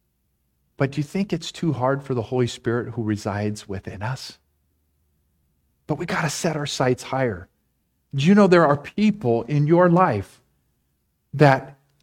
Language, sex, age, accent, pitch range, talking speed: English, male, 40-59, American, 115-170 Hz, 165 wpm